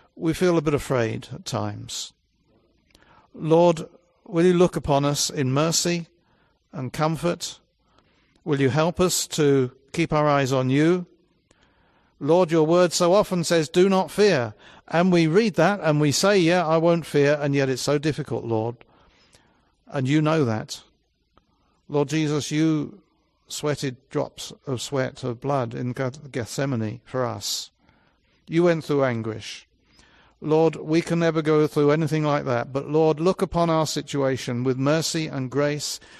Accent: British